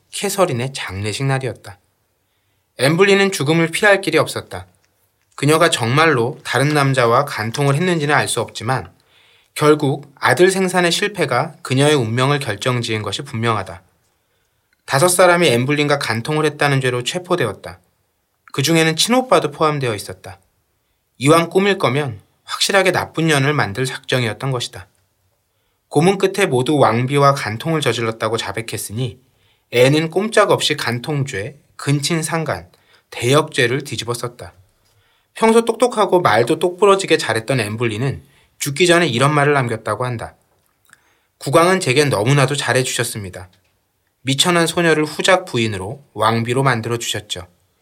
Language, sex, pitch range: Korean, male, 110-155 Hz